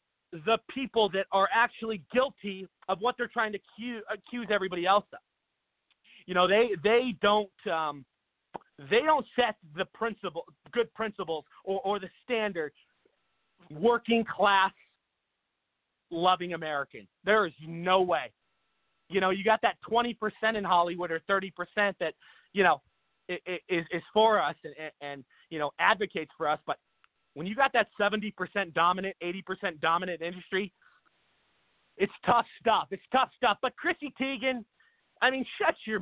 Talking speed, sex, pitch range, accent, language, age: 145 wpm, male, 180-220 Hz, American, English, 30-49